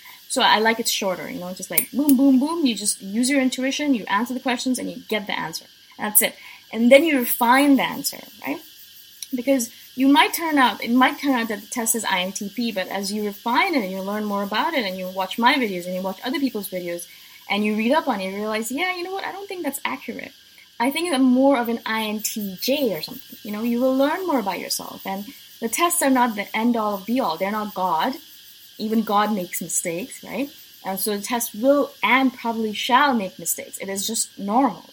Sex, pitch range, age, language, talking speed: female, 200-260 Hz, 20-39, English, 230 wpm